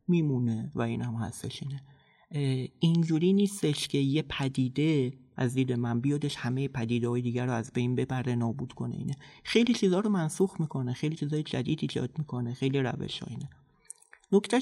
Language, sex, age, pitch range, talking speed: Persian, male, 30-49, 125-170 Hz, 165 wpm